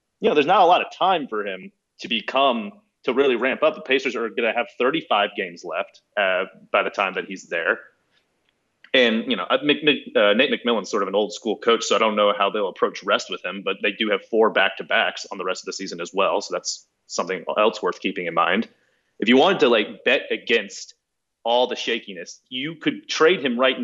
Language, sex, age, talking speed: English, male, 30-49, 230 wpm